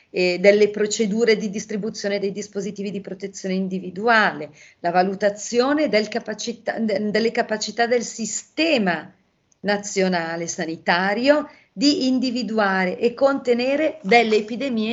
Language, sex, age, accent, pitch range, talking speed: Italian, female, 40-59, native, 180-220 Hz, 110 wpm